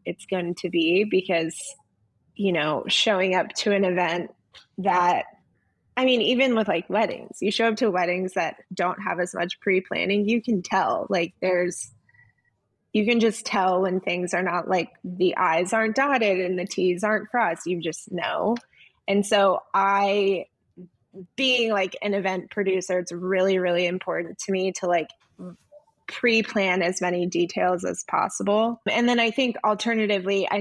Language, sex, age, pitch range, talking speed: English, female, 20-39, 180-210 Hz, 165 wpm